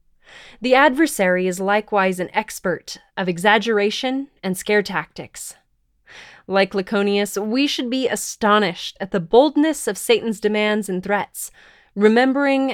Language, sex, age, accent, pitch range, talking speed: English, female, 20-39, American, 180-235 Hz, 120 wpm